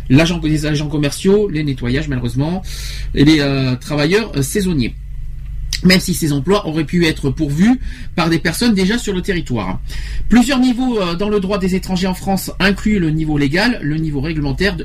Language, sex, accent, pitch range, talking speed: French, male, French, 145-215 Hz, 180 wpm